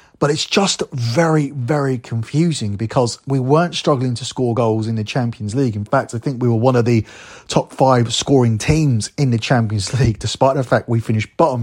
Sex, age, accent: male, 30-49, British